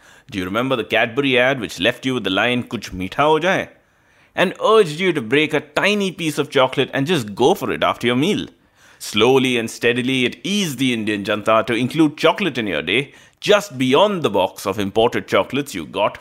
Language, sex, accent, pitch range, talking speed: English, male, Indian, 115-160 Hz, 210 wpm